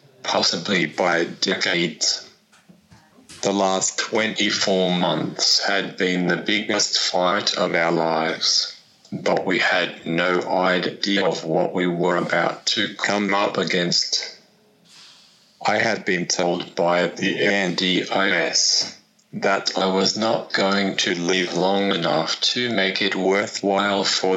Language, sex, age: English, male, 30-49